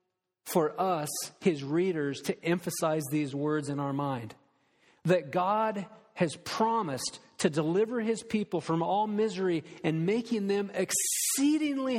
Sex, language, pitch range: male, English, 160-215 Hz